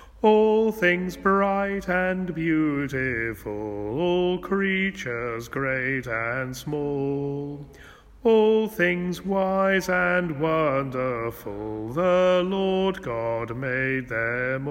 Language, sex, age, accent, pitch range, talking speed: English, male, 40-59, British, 115-180 Hz, 80 wpm